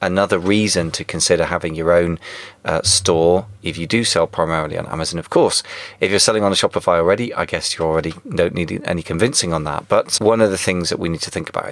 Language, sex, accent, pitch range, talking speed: English, male, British, 85-95 Hz, 235 wpm